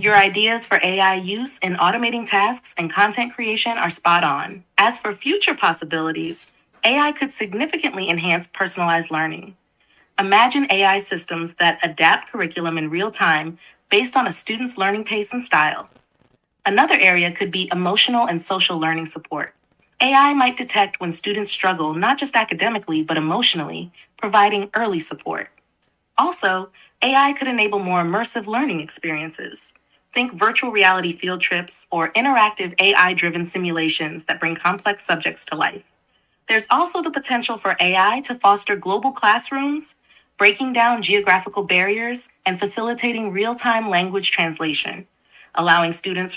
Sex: female